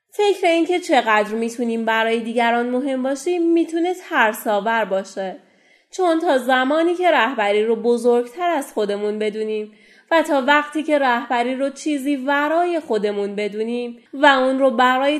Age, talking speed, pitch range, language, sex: 30-49, 140 wpm, 215-285 Hz, Persian, female